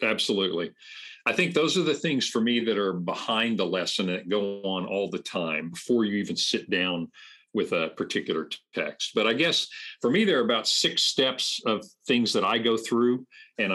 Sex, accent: male, American